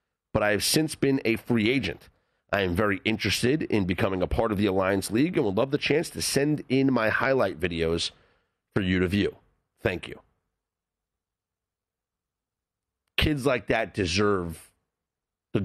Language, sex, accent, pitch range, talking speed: English, male, American, 95-140 Hz, 160 wpm